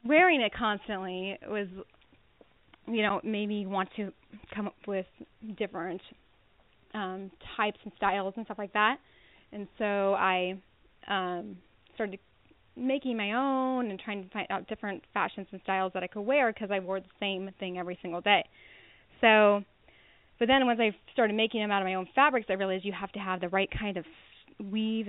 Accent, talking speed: American, 180 wpm